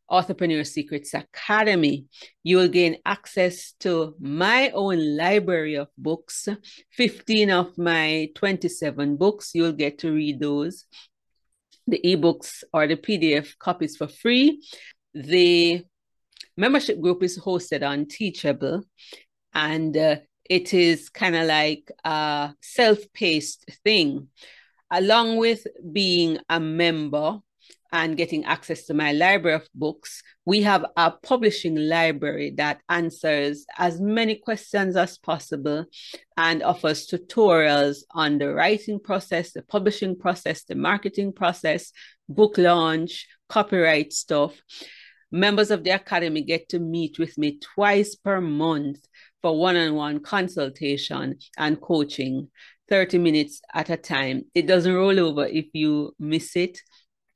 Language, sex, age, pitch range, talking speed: English, female, 40-59, 155-190 Hz, 125 wpm